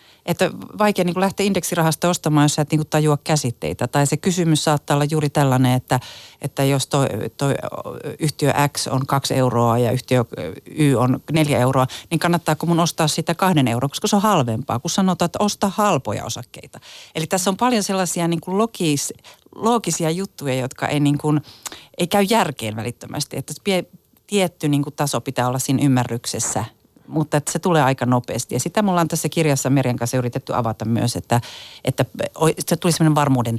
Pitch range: 125-175 Hz